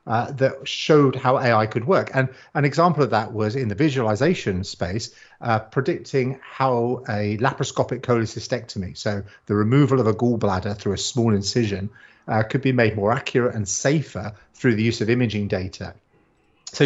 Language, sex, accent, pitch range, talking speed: English, male, British, 105-135 Hz, 170 wpm